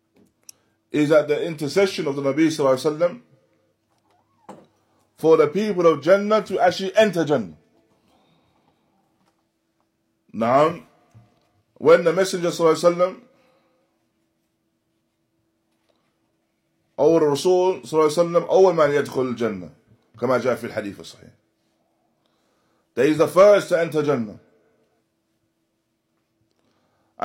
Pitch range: 110-175 Hz